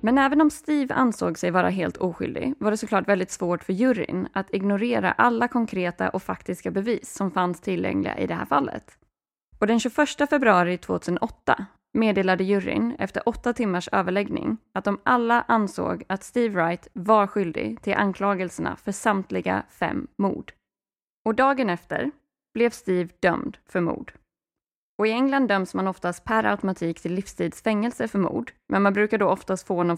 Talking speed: 165 wpm